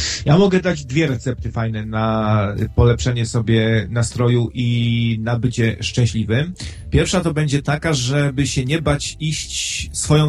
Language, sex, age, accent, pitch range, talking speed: English, male, 40-59, Polish, 120-165 Hz, 140 wpm